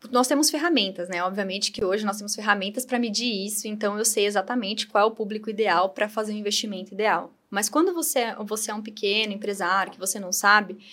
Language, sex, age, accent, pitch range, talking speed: Portuguese, female, 10-29, Brazilian, 210-295 Hz, 215 wpm